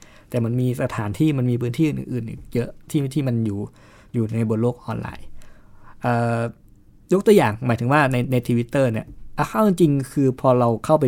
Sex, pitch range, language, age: male, 115-140 Hz, Thai, 20-39